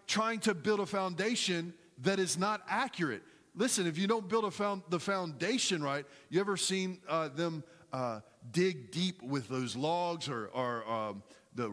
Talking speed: 175 wpm